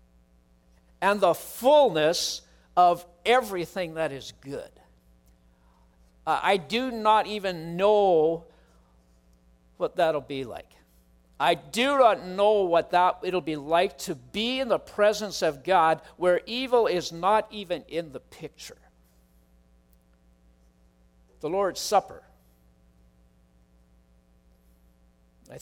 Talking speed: 110 wpm